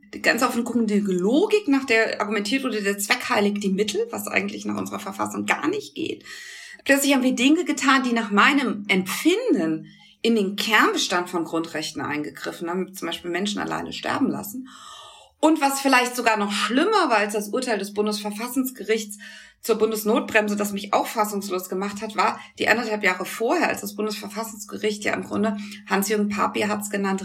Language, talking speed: German, 170 wpm